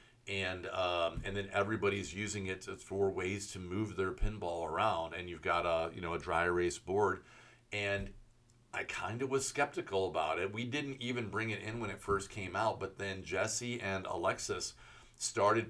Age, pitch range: 40-59, 95-115 Hz